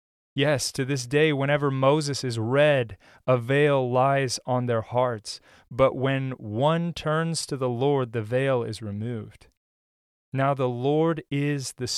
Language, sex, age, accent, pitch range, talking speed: English, male, 30-49, American, 120-145 Hz, 150 wpm